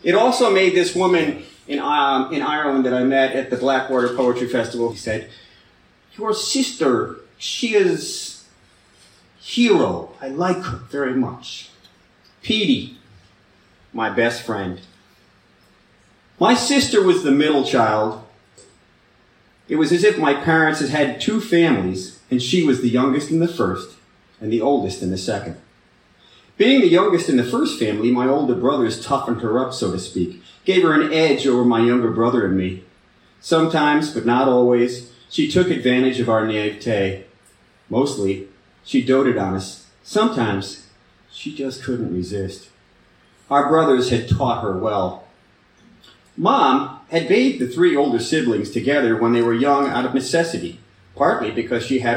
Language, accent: English, American